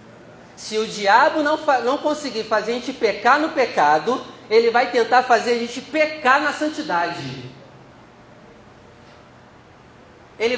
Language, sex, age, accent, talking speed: Portuguese, male, 40-59, Brazilian, 125 wpm